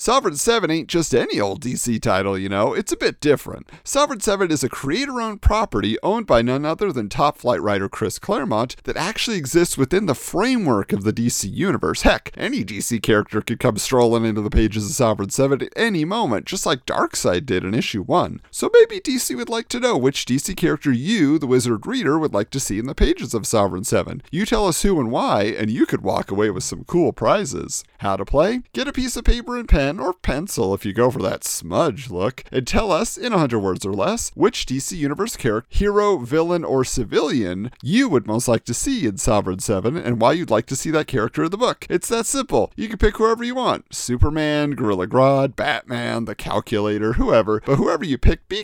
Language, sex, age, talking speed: English, male, 40-59, 220 wpm